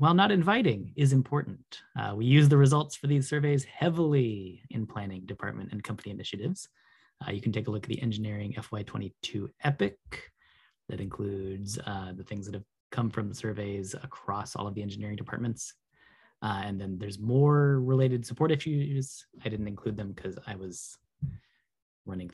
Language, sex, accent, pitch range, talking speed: English, male, American, 100-145 Hz, 170 wpm